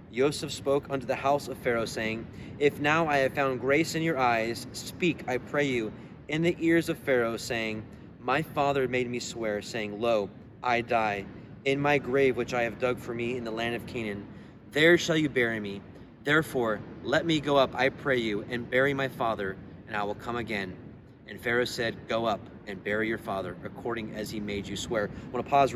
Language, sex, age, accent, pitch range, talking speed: English, male, 30-49, American, 115-145 Hz, 210 wpm